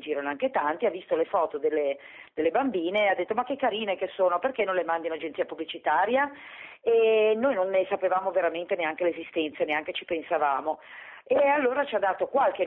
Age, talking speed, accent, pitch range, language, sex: 40-59, 195 wpm, native, 160-220 Hz, Italian, female